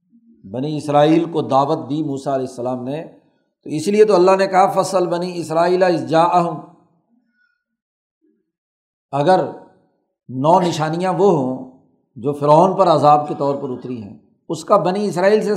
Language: Urdu